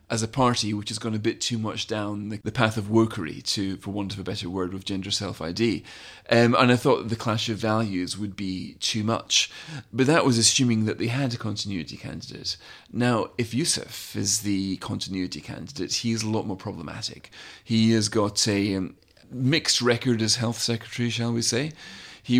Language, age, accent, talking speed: English, 30-49, British, 200 wpm